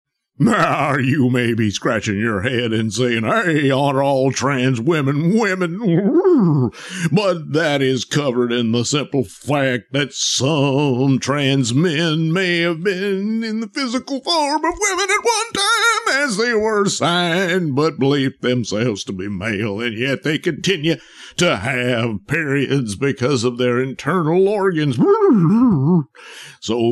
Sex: male